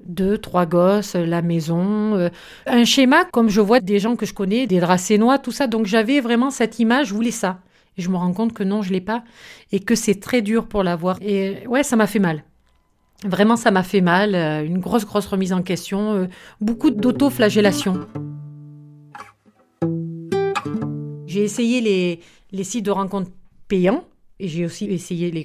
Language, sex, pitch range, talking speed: French, female, 175-210 Hz, 180 wpm